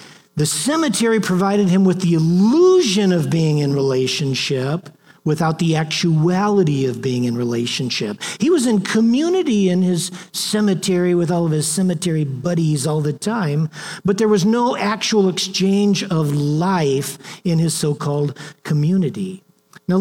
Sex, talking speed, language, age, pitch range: male, 140 wpm, English, 50-69, 140-190 Hz